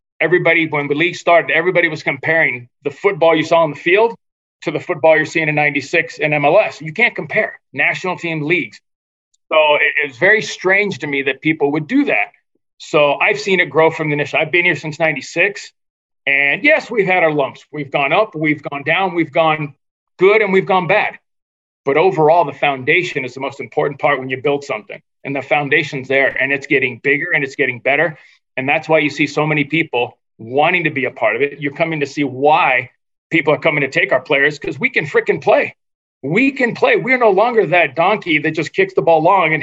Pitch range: 145-180 Hz